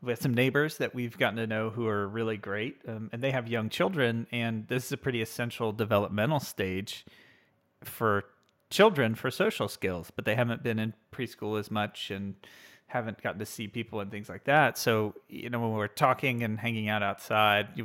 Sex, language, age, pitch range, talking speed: male, English, 30-49, 105-125 Hz, 205 wpm